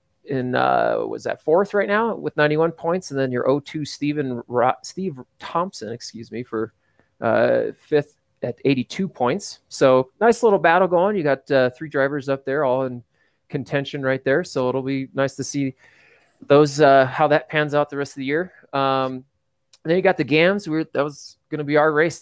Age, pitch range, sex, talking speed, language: 30-49, 130-150 Hz, male, 205 wpm, English